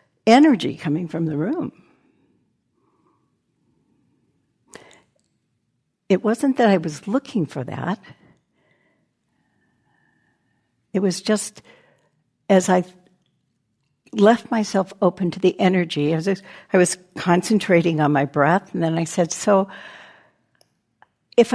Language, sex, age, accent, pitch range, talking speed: English, female, 60-79, American, 160-205 Hz, 105 wpm